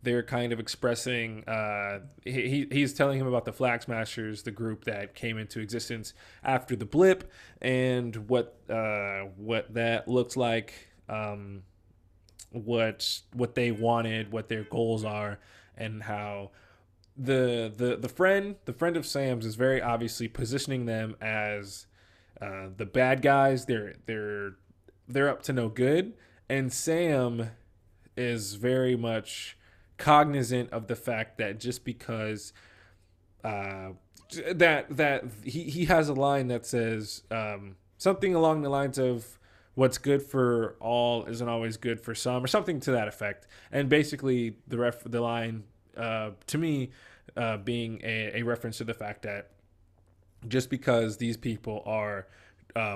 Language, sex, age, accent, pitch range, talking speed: English, male, 20-39, American, 105-125 Hz, 145 wpm